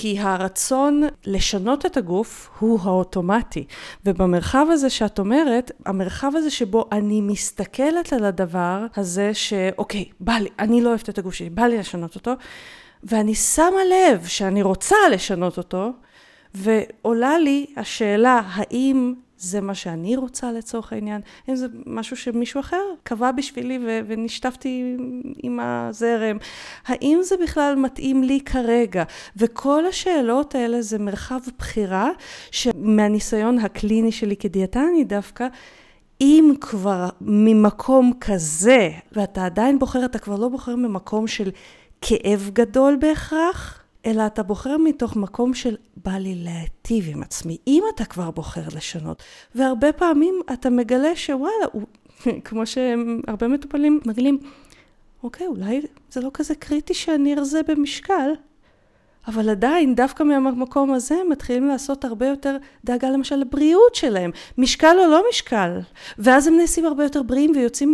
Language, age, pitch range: Hebrew, 30-49, 210-280 Hz